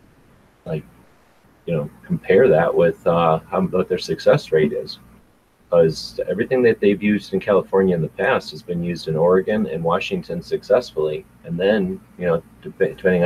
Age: 30-49